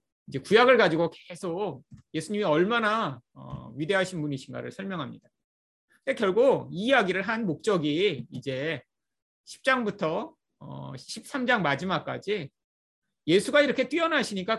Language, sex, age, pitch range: Korean, male, 30-49, 155-245 Hz